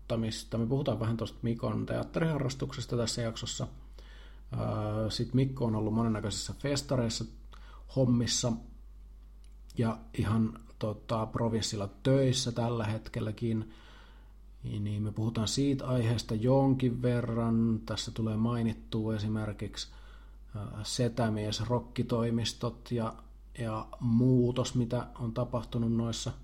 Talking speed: 100 wpm